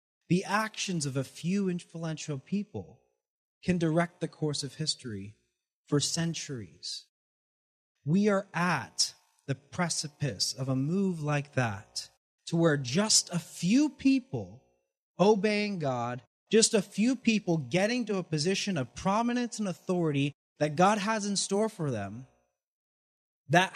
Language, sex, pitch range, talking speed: English, male, 135-205 Hz, 135 wpm